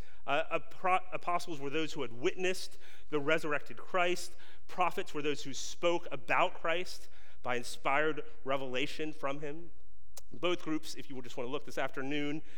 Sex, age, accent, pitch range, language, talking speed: male, 30-49, American, 130-185 Hz, English, 155 wpm